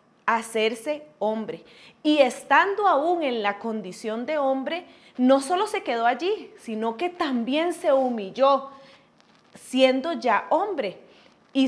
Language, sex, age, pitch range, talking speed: Spanish, female, 30-49, 225-320 Hz, 125 wpm